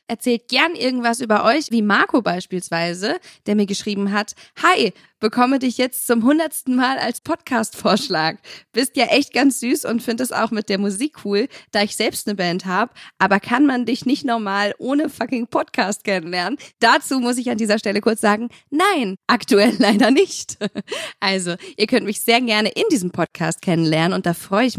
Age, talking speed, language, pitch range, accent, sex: 20-39, 185 wpm, German, 195-255 Hz, German, female